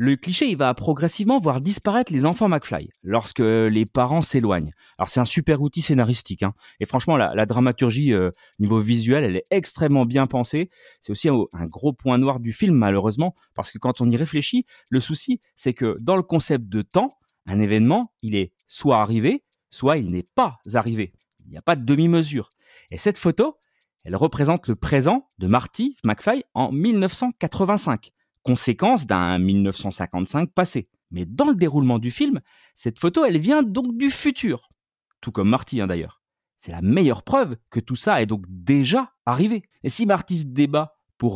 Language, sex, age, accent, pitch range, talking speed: French, male, 30-49, French, 115-180 Hz, 185 wpm